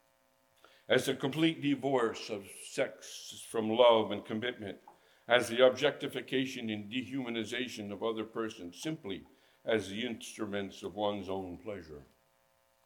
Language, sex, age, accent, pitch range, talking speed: English, male, 60-79, American, 75-115 Hz, 120 wpm